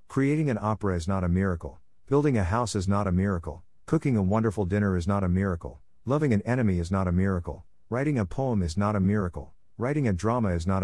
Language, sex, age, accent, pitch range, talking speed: English, male, 50-69, American, 90-120 Hz, 225 wpm